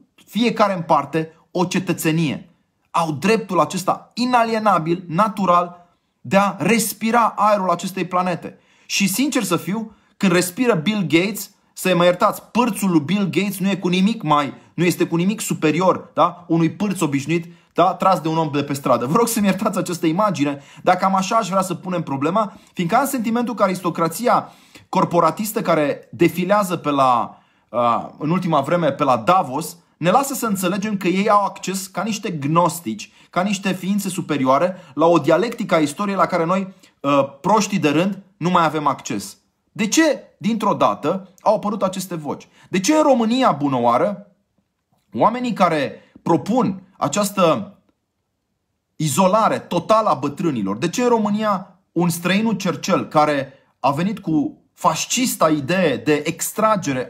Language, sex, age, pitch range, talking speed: Romanian, male, 30-49, 165-210 Hz, 155 wpm